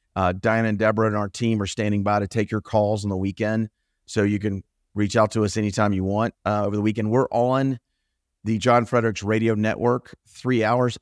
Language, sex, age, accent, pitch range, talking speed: English, male, 30-49, American, 100-115 Hz, 220 wpm